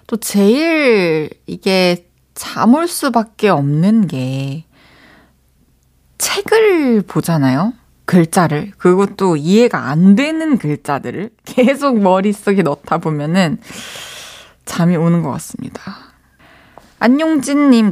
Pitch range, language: 160-240 Hz, Korean